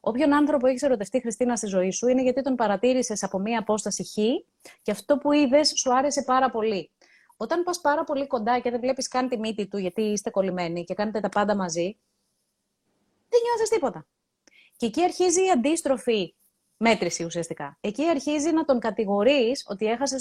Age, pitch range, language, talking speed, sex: 30-49, 200-270 Hz, Greek, 180 wpm, female